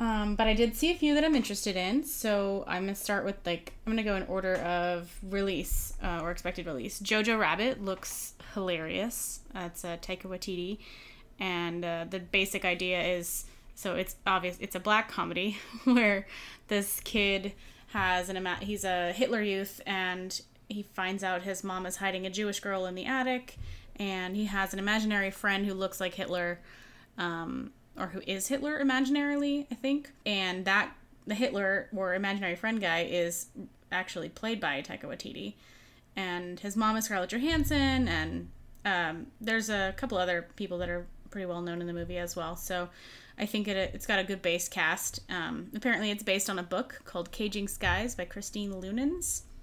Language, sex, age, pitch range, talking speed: English, female, 20-39, 175-215 Hz, 185 wpm